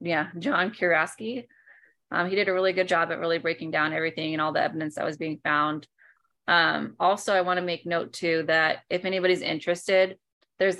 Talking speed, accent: 200 wpm, American